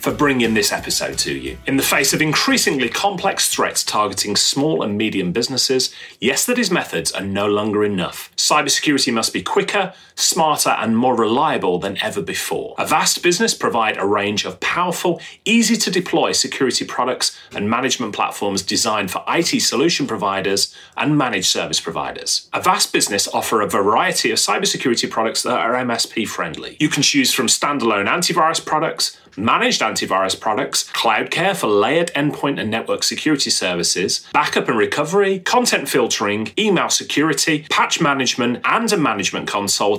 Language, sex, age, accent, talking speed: English, male, 30-49, British, 160 wpm